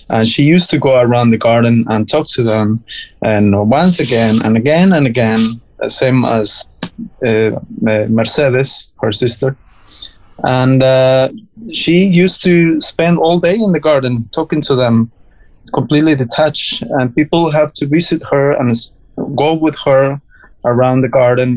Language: English